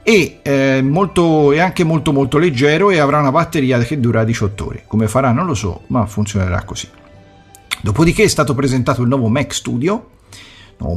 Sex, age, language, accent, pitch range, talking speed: male, 50-69, Italian, native, 105-135 Hz, 180 wpm